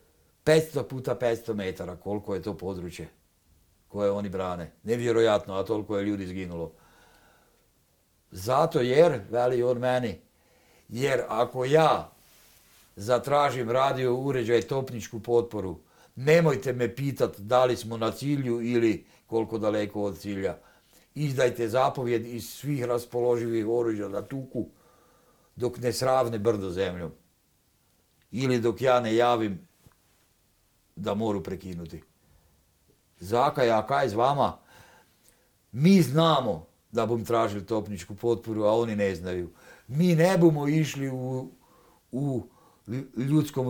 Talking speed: 120 wpm